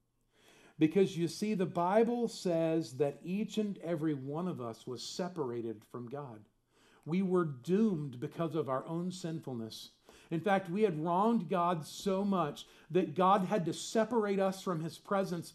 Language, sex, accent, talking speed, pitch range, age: English, male, American, 160 wpm, 145-205 Hz, 50-69